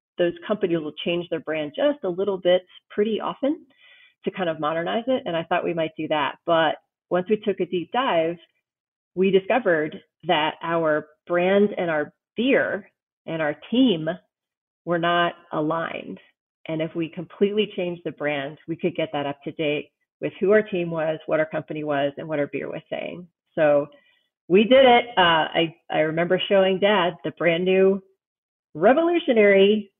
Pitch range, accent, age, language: 160-205 Hz, American, 40-59, English